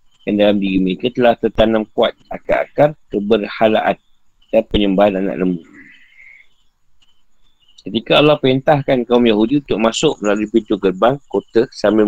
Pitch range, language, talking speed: 100-130 Hz, Malay, 125 wpm